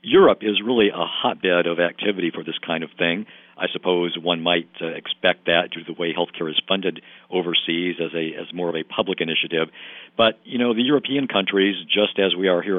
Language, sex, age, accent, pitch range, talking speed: English, male, 50-69, American, 85-100 Hz, 210 wpm